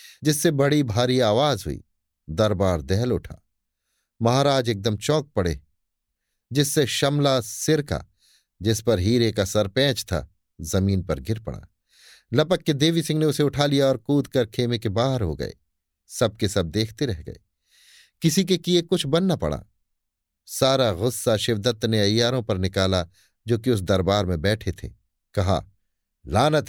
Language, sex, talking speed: Hindi, male, 155 wpm